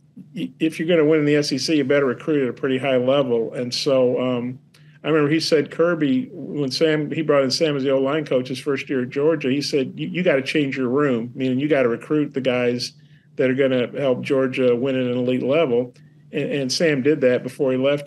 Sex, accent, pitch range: male, American, 130-150 Hz